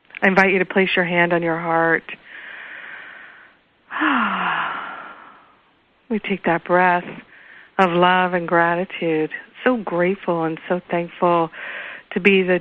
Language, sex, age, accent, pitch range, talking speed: English, female, 50-69, American, 170-190 Hz, 125 wpm